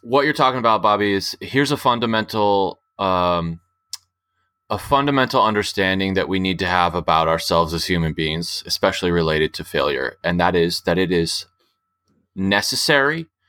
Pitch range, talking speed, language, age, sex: 90-110 Hz, 150 wpm, English, 20-39, male